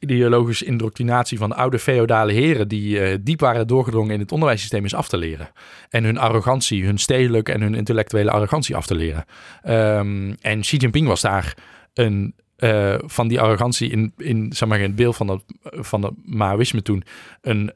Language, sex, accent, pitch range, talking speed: Dutch, male, Dutch, 105-120 Hz, 195 wpm